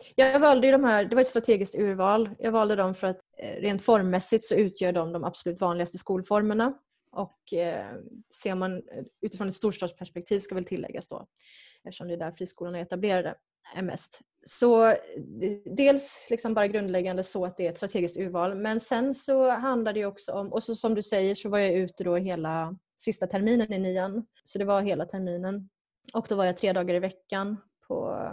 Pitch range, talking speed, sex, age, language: 190-235 Hz, 190 wpm, female, 20-39, Swedish